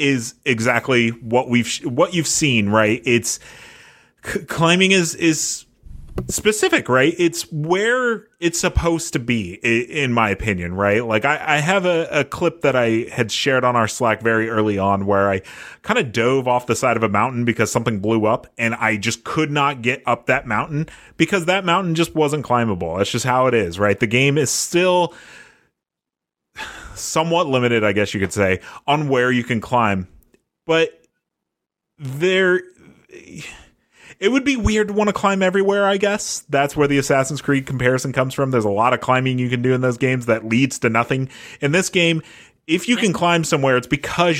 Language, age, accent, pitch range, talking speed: English, 30-49, American, 115-160 Hz, 190 wpm